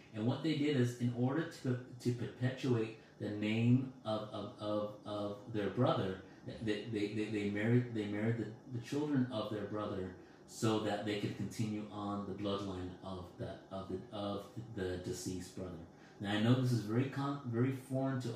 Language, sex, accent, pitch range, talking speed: English, male, American, 100-125 Hz, 185 wpm